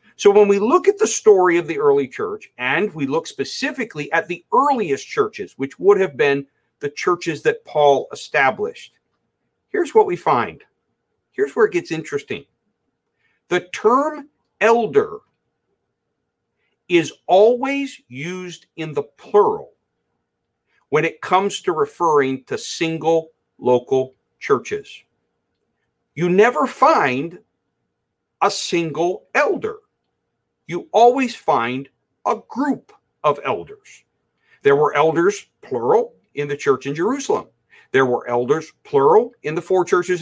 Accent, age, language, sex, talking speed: American, 50-69, English, male, 125 wpm